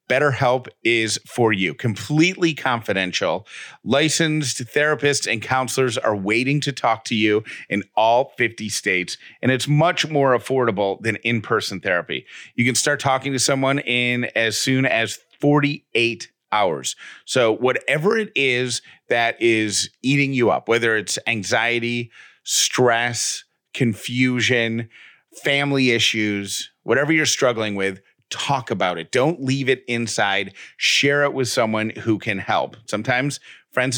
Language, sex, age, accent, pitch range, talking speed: English, male, 40-59, American, 110-140 Hz, 135 wpm